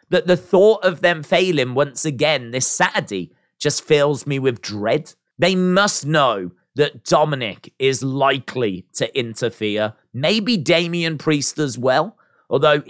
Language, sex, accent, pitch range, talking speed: English, male, British, 120-175 Hz, 140 wpm